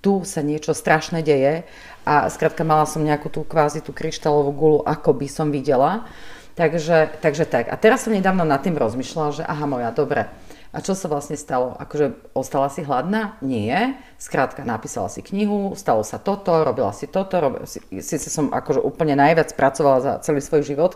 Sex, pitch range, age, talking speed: female, 150-200 Hz, 40-59, 190 wpm